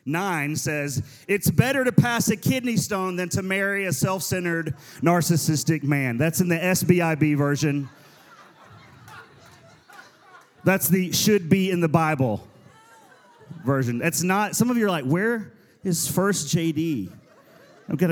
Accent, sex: American, male